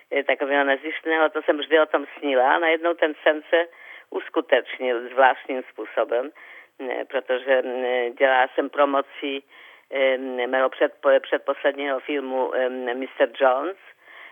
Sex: female